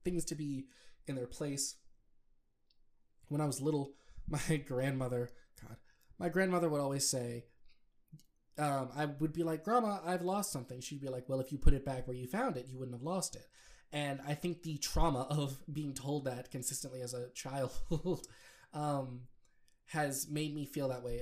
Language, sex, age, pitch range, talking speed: English, male, 20-39, 130-160 Hz, 185 wpm